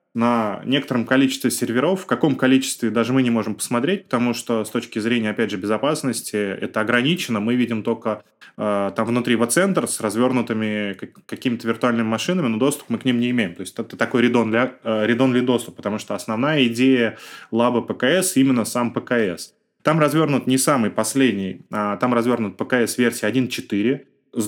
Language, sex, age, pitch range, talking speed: Russian, male, 20-39, 115-135 Hz, 170 wpm